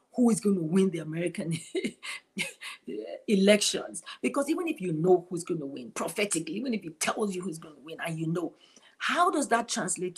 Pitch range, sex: 165-215 Hz, female